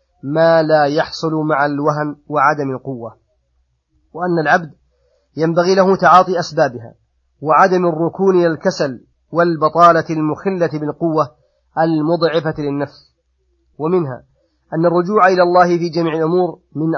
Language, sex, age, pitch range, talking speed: Arabic, male, 30-49, 145-170 Hz, 105 wpm